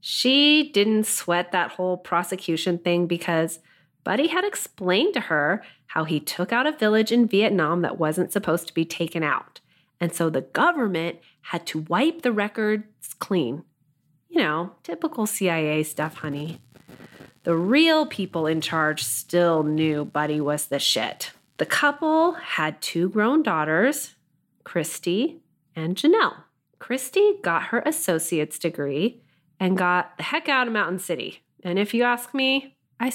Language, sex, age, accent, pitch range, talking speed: English, female, 30-49, American, 160-245 Hz, 150 wpm